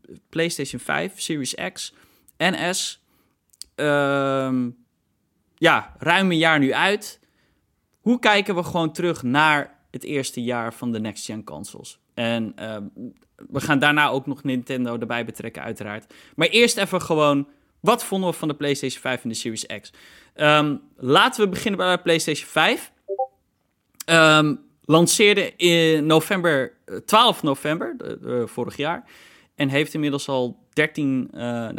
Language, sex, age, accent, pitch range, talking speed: Dutch, male, 20-39, Dutch, 120-155 Hz, 130 wpm